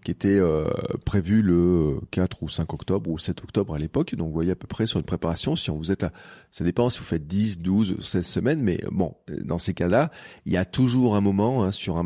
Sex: male